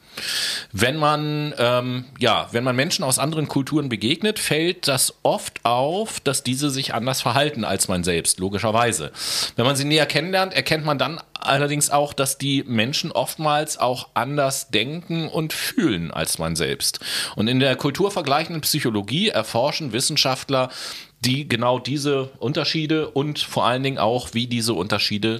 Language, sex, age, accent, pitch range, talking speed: German, male, 30-49, German, 120-155 Hz, 145 wpm